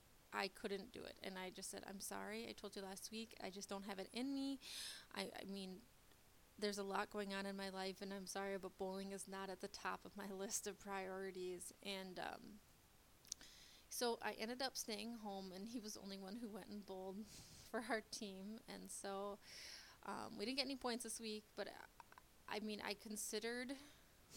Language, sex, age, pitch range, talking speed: English, female, 20-39, 195-225 Hz, 210 wpm